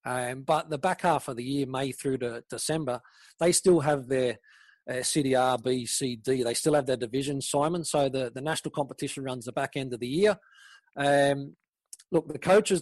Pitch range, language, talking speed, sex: 135-175 Hz, English, 195 wpm, male